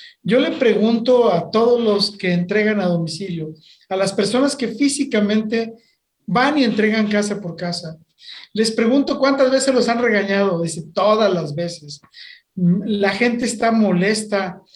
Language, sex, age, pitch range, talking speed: Spanish, male, 50-69, 205-260 Hz, 145 wpm